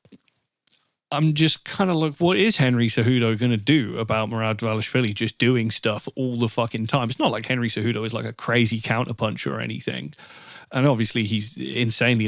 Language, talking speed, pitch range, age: English, 185 wpm, 110-130 Hz, 30-49